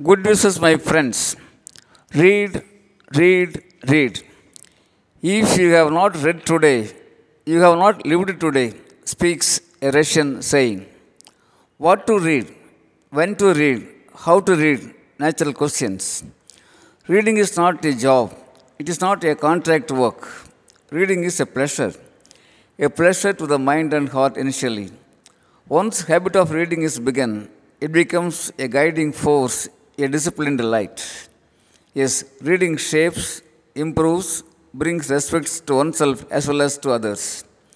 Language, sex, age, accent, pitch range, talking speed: Tamil, male, 50-69, native, 135-170 Hz, 135 wpm